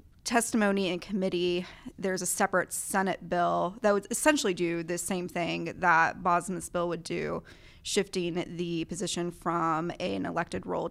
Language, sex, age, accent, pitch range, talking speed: English, female, 20-39, American, 175-200 Hz, 150 wpm